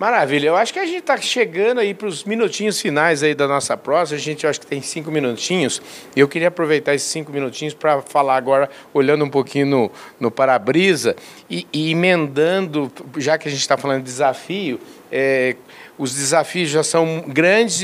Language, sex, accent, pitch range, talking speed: Portuguese, male, Brazilian, 140-180 Hz, 190 wpm